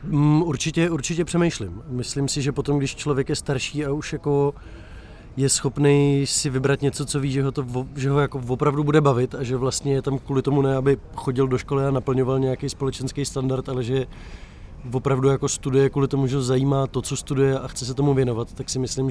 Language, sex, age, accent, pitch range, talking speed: Czech, male, 20-39, native, 125-140 Hz, 215 wpm